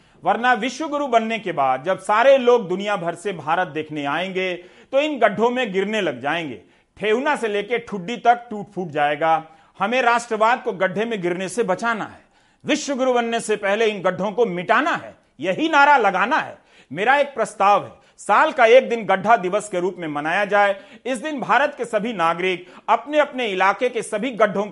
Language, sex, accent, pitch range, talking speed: Hindi, male, native, 180-235 Hz, 190 wpm